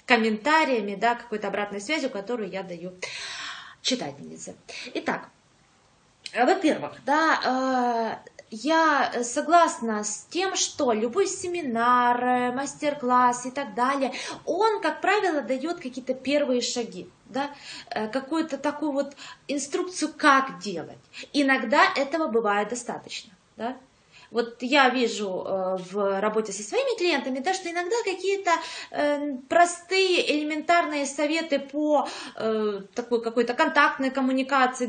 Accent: native